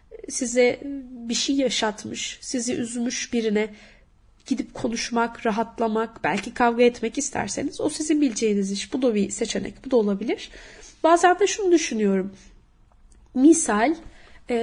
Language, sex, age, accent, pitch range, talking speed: Turkish, female, 30-49, native, 210-315 Hz, 125 wpm